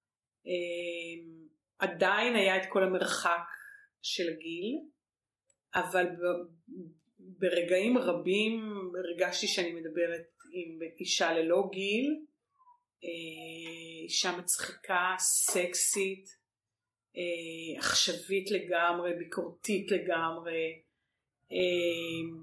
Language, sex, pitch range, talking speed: Hebrew, female, 175-295 Hz, 75 wpm